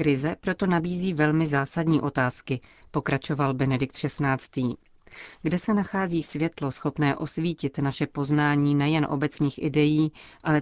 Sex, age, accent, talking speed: female, 30-49, native, 120 wpm